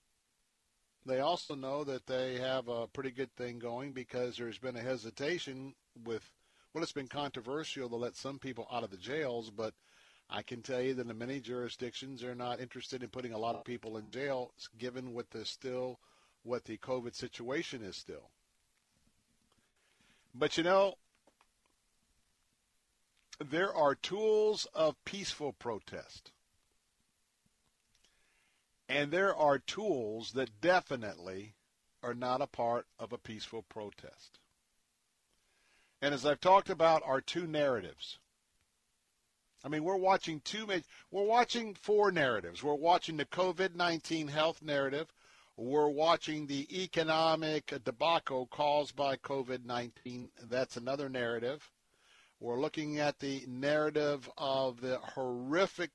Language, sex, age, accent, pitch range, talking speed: English, male, 50-69, American, 125-155 Hz, 135 wpm